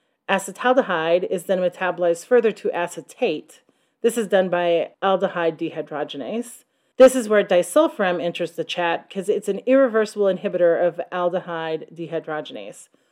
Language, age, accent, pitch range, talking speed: English, 30-49, American, 170-220 Hz, 130 wpm